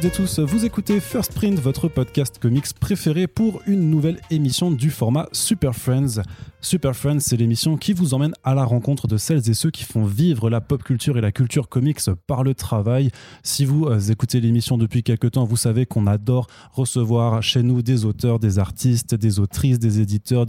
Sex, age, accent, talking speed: male, 20-39, French, 195 wpm